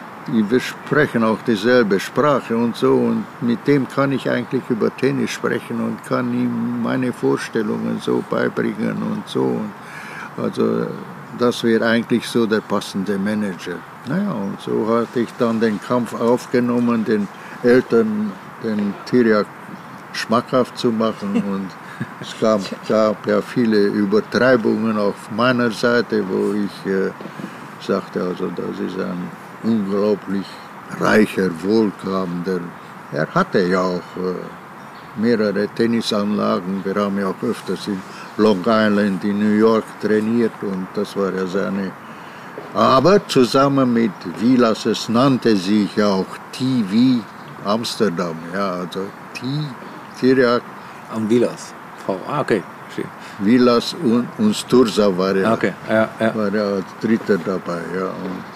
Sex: male